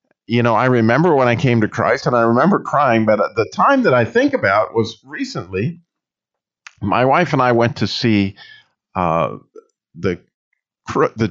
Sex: male